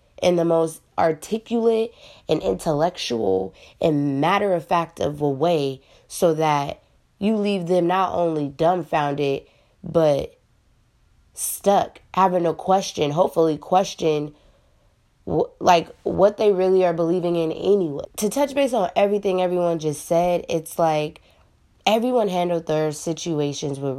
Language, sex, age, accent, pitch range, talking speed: English, female, 20-39, American, 150-190 Hz, 125 wpm